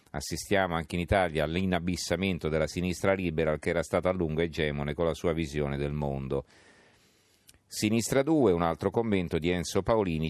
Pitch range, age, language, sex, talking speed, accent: 80-100 Hz, 40-59, Italian, male, 165 wpm, native